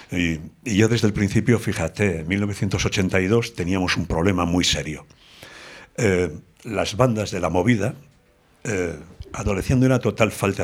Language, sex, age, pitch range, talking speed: Spanish, male, 60-79, 90-125 Hz, 140 wpm